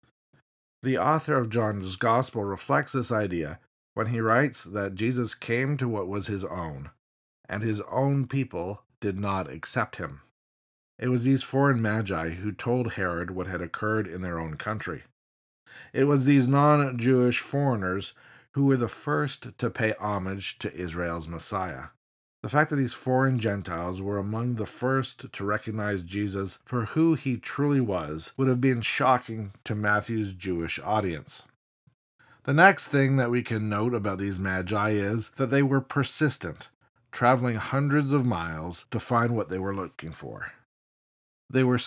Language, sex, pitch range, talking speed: English, male, 95-130 Hz, 160 wpm